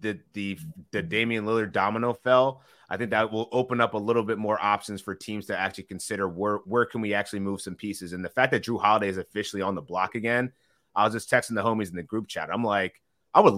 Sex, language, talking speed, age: male, English, 250 wpm, 30-49